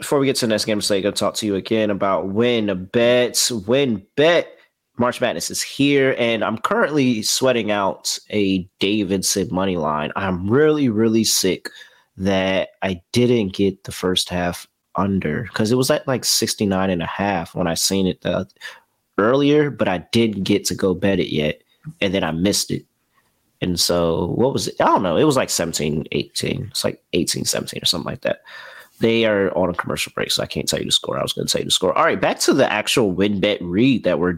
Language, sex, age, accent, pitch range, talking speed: English, male, 30-49, American, 90-120 Hz, 225 wpm